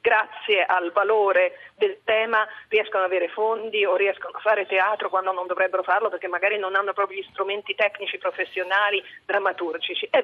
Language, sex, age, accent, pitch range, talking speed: Italian, female, 40-59, native, 200-265 Hz, 170 wpm